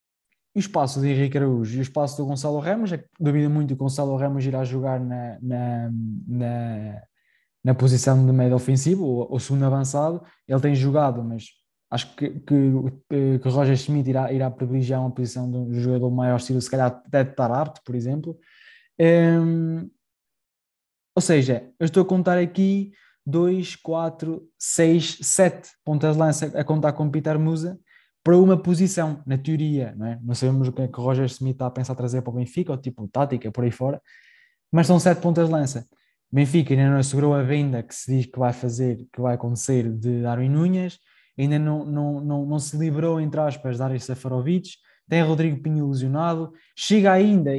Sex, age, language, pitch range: male, 20-39, Portuguese, 130-160 Hz